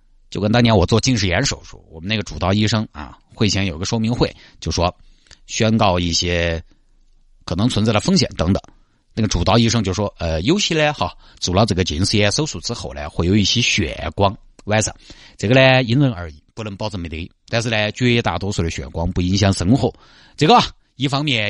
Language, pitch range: Chinese, 95-125 Hz